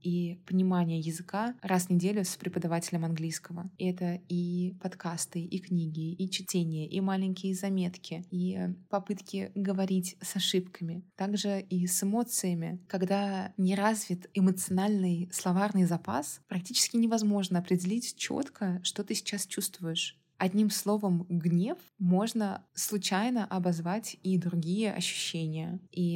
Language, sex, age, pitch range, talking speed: Russian, female, 20-39, 175-195 Hz, 120 wpm